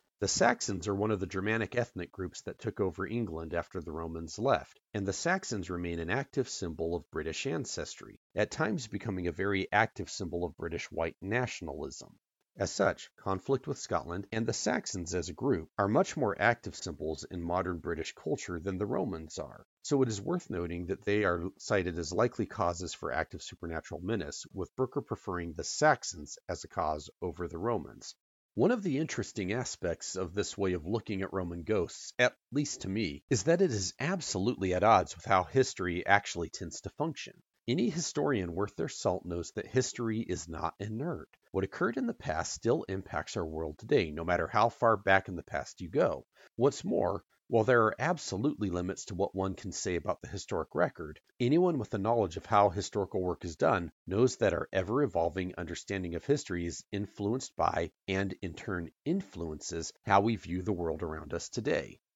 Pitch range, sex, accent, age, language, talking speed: 90-115 Hz, male, American, 40-59, English, 190 wpm